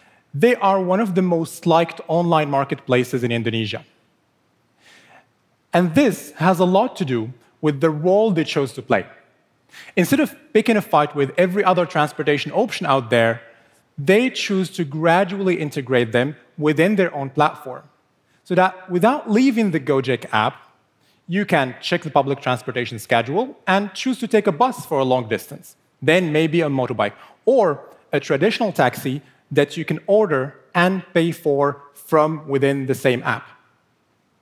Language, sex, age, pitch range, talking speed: English, male, 30-49, 135-185 Hz, 160 wpm